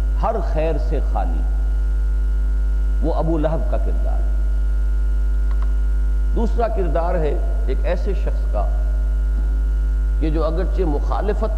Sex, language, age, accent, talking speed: male, English, 50-69, Indian, 110 wpm